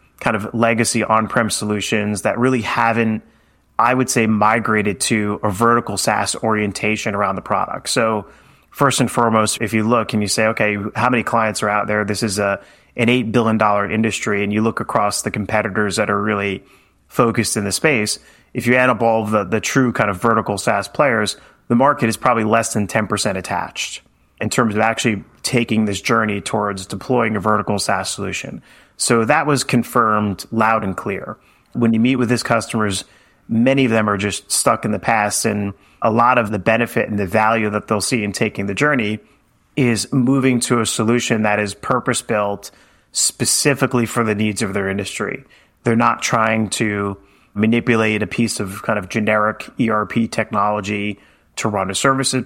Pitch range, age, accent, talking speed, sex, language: 105-115 Hz, 30-49, American, 185 wpm, male, English